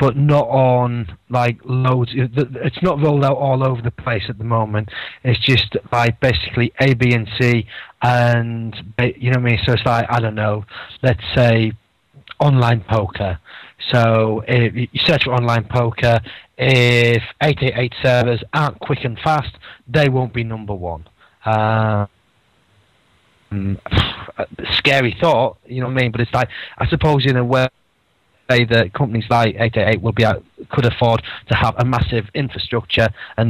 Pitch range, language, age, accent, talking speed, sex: 110-125 Hz, English, 30-49, British, 160 wpm, male